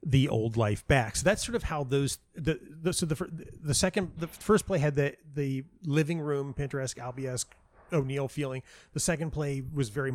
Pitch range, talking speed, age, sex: 115-140 Hz, 195 wpm, 30-49, male